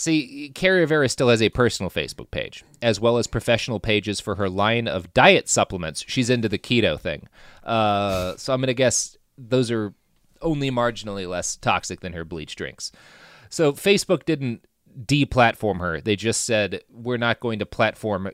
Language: English